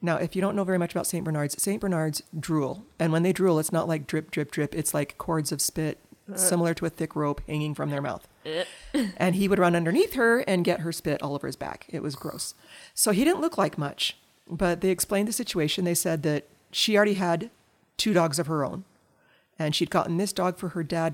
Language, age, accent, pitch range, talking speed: English, 40-59, American, 150-180 Hz, 240 wpm